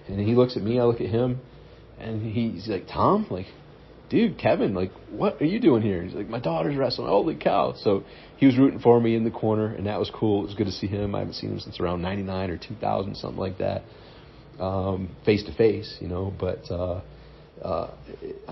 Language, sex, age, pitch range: English, male, 40-59, 90-110 Hz